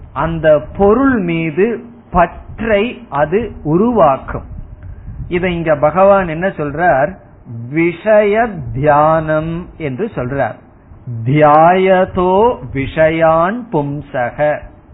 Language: Tamil